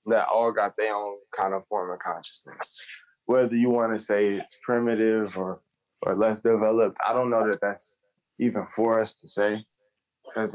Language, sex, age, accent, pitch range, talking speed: English, male, 20-39, American, 110-130 Hz, 180 wpm